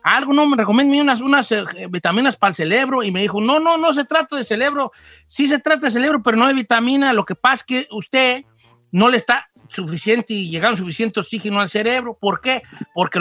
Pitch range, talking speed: 205-280 Hz, 220 wpm